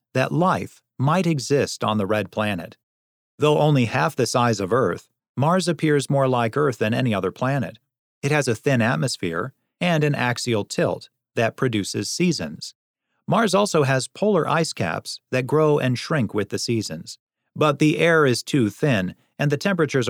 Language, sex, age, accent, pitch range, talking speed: English, male, 40-59, American, 110-145 Hz, 175 wpm